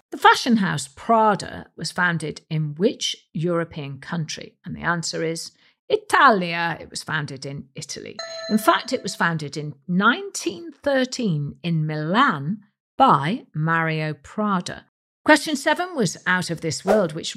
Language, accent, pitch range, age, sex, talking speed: English, British, 155-220 Hz, 50-69, female, 140 wpm